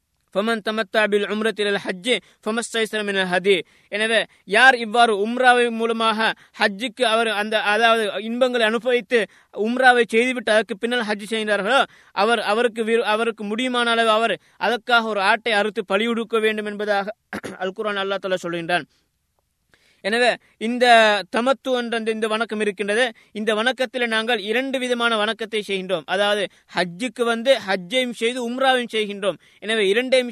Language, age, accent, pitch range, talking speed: Tamil, 20-39, native, 210-240 Hz, 115 wpm